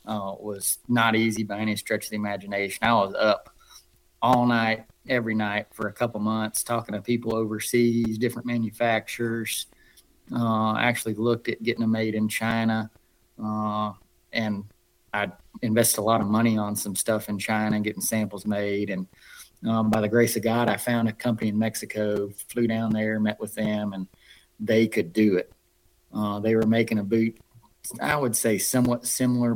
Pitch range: 105-115 Hz